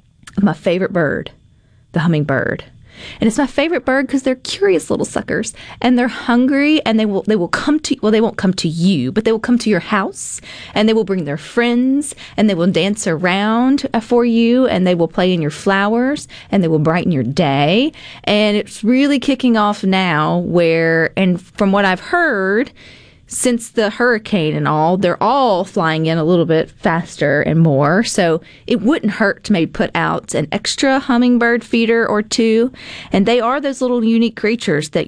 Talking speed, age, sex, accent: 195 wpm, 30-49, female, American